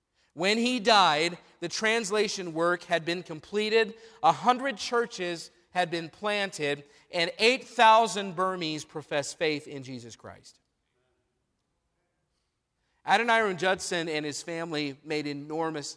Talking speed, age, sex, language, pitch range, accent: 115 wpm, 40-59, male, English, 135-170 Hz, American